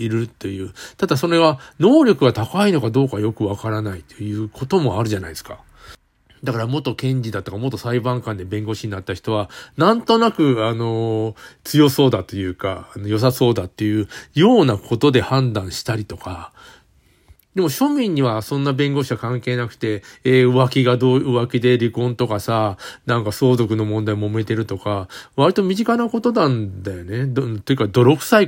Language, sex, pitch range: Japanese, male, 105-150 Hz